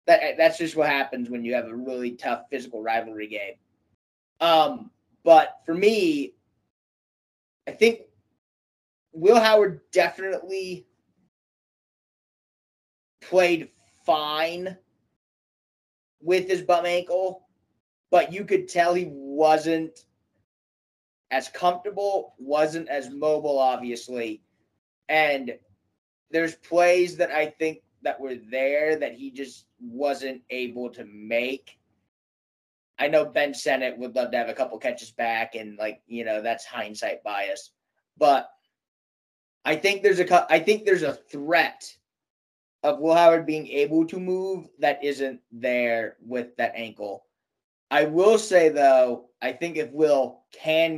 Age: 30-49